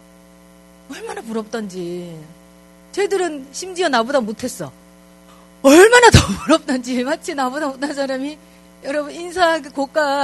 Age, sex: 40-59, female